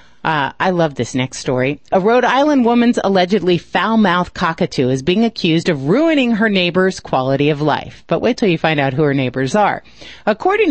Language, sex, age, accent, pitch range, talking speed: English, female, 40-59, American, 145-205 Hz, 195 wpm